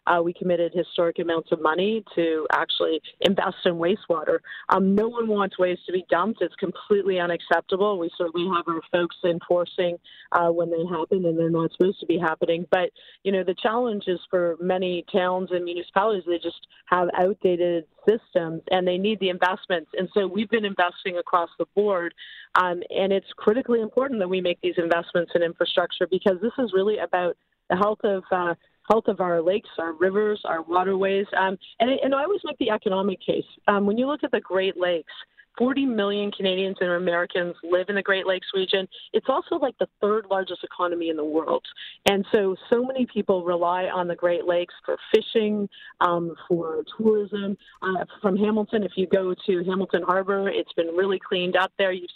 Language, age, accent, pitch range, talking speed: English, 30-49, American, 175-205 Hz, 190 wpm